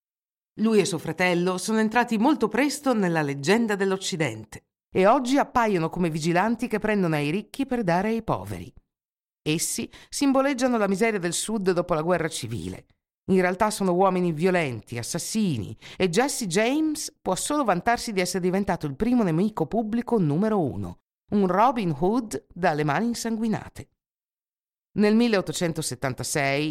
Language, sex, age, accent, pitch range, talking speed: Italian, female, 50-69, native, 150-220 Hz, 140 wpm